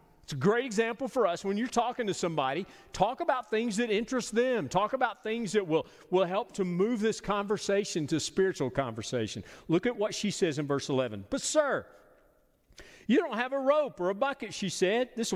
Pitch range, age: 130-215 Hz, 40-59